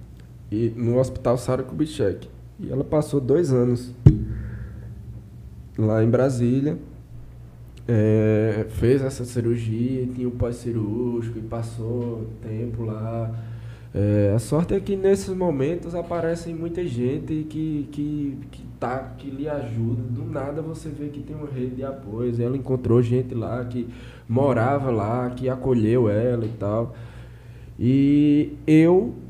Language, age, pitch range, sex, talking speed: Portuguese, 10-29, 110-140 Hz, male, 125 wpm